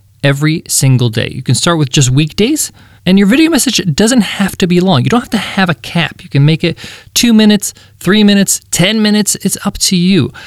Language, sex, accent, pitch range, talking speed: English, male, American, 125-170 Hz, 225 wpm